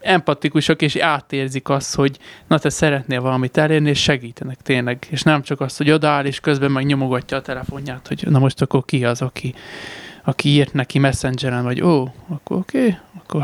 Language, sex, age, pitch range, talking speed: Hungarian, male, 20-39, 130-160 Hz, 190 wpm